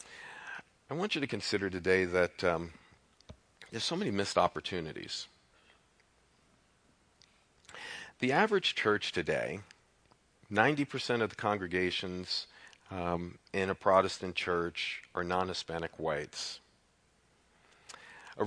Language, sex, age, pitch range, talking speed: English, male, 40-59, 90-110 Hz, 95 wpm